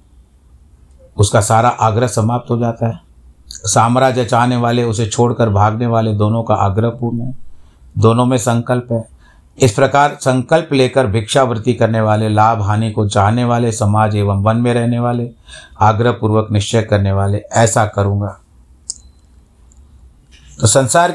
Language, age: Hindi, 60-79